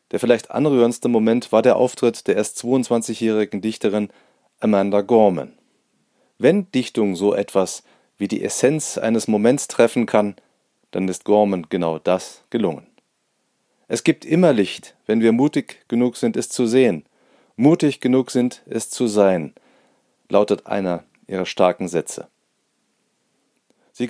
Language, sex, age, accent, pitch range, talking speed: German, male, 30-49, German, 105-130 Hz, 135 wpm